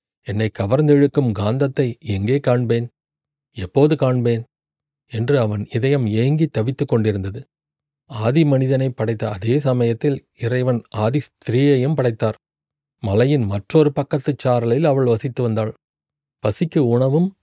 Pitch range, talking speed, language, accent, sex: 115-145 Hz, 105 wpm, Tamil, native, male